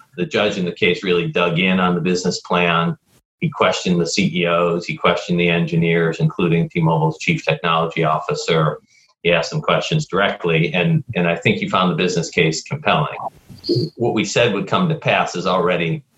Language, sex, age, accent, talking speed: English, male, 40-59, American, 180 wpm